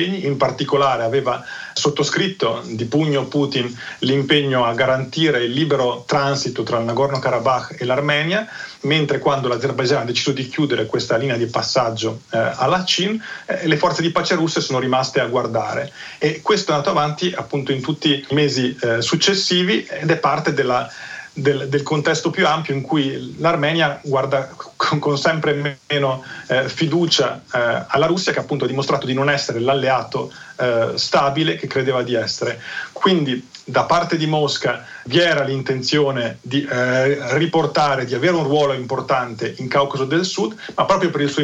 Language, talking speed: Italian, 165 wpm